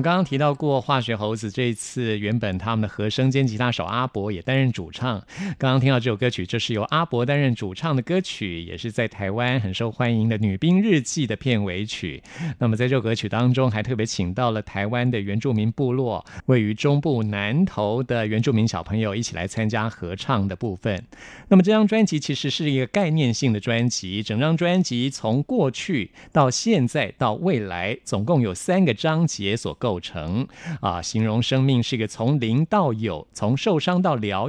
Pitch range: 110-140 Hz